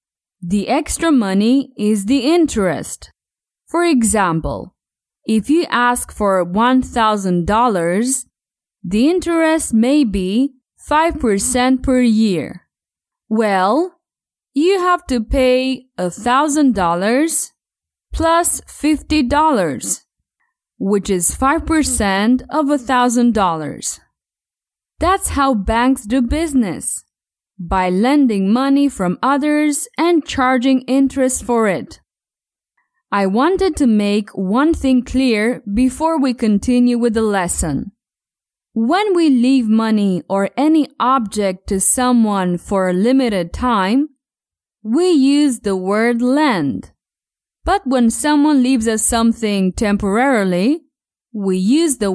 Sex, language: female, English